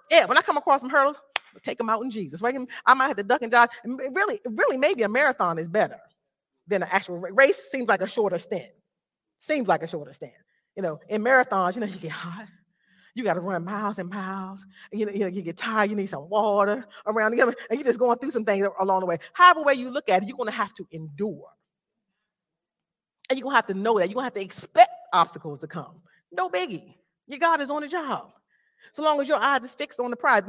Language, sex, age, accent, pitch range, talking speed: English, female, 40-59, American, 175-255 Hz, 250 wpm